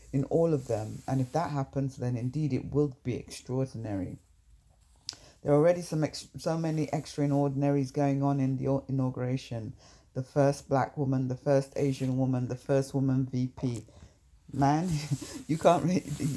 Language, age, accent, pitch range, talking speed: English, 60-79, British, 130-145 Hz, 160 wpm